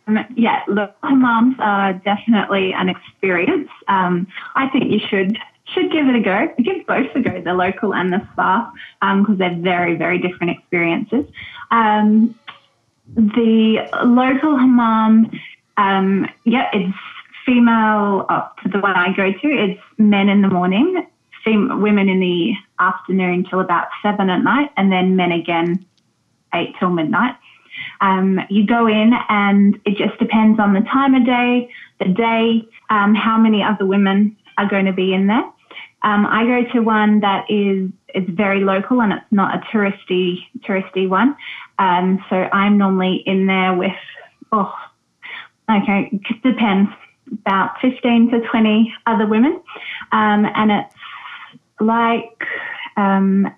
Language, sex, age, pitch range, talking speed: English, female, 20-39, 195-240 Hz, 155 wpm